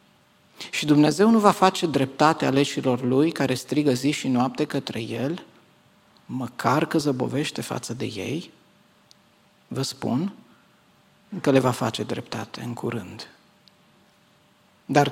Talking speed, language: 125 wpm, Romanian